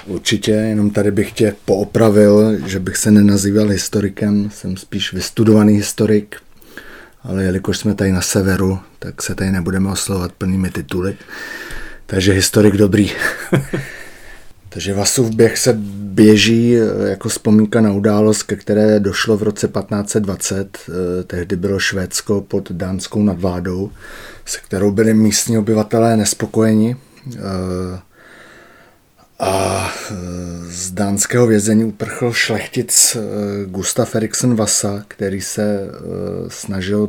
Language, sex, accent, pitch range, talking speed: Czech, male, native, 100-110 Hz, 115 wpm